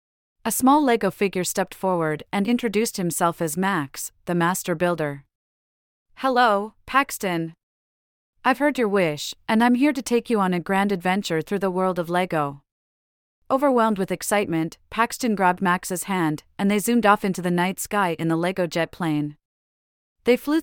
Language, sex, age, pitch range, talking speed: English, female, 30-49, 165-205 Hz, 165 wpm